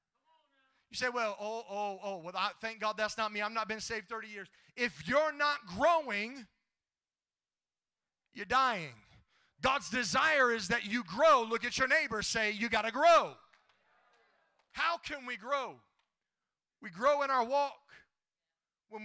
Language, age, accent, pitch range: English, 30-49, American, 210-270 Hz